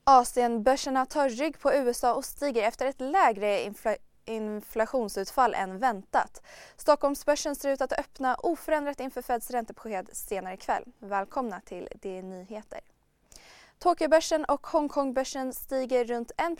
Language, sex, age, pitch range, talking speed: Swedish, female, 20-39, 220-280 Hz, 125 wpm